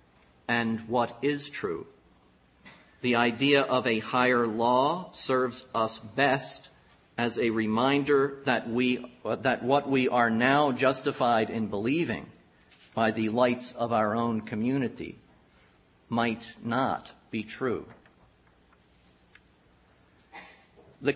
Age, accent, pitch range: 50-69, American, 100-140 Hz